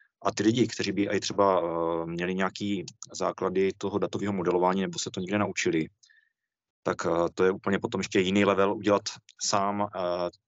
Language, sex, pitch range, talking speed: Czech, male, 95-115 Hz, 180 wpm